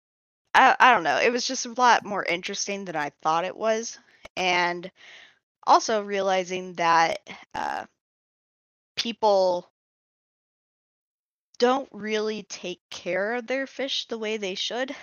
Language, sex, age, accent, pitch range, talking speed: English, female, 10-29, American, 175-210 Hz, 130 wpm